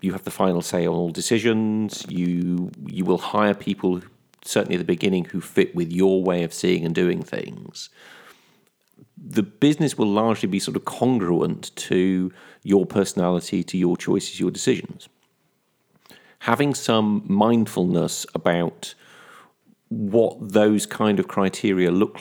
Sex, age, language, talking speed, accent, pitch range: male, 40-59, English, 145 wpm, British, 90-110 Hz